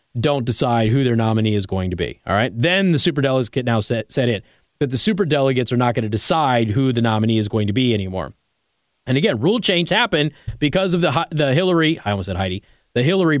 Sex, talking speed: male, 230 wpm